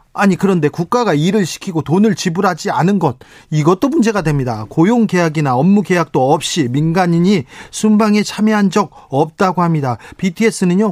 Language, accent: Korean, native